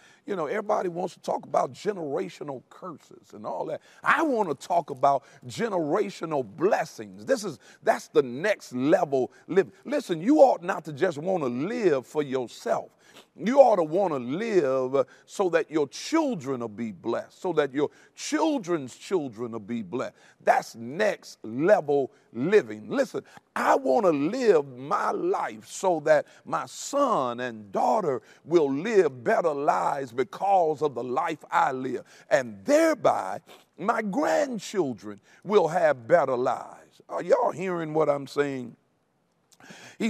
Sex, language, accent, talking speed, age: male, English, American, 150 wpm, 50-69